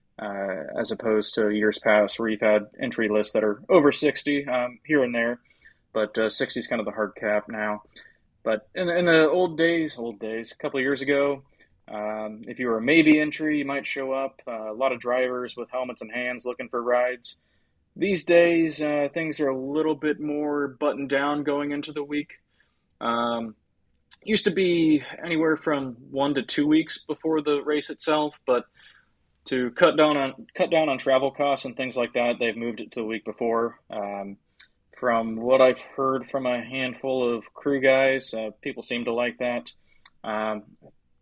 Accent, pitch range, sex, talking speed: American, 110-145 Hz, male, 195 wpm